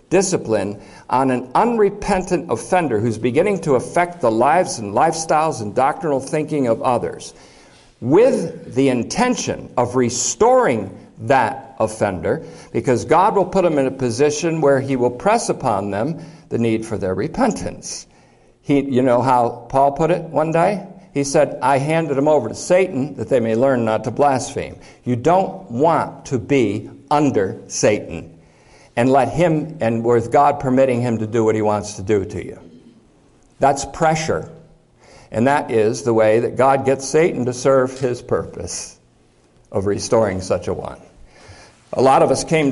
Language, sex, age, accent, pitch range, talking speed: English, male, 60-79, American, 115-150 Hz, 165 wpm